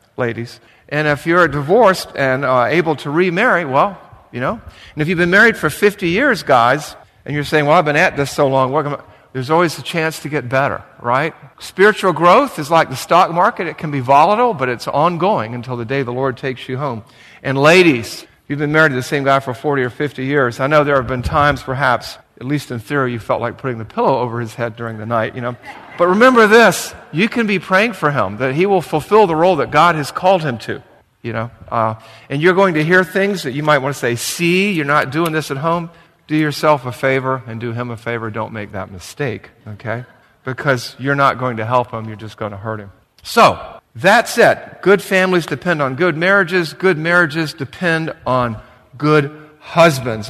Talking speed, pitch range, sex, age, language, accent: 225 wpm, 125-170 Hz, male, 50-69, English, American